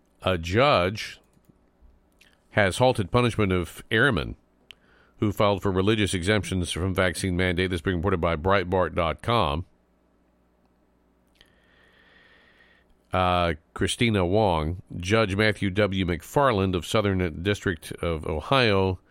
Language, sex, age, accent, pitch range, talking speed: English, male, 50-69, American, 85-105 Hz, 105 wpm